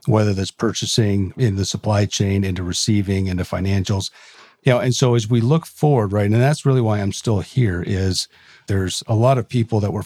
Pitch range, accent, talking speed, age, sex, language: 95-115 Hz, American, 210 wpm, 50-69, male, English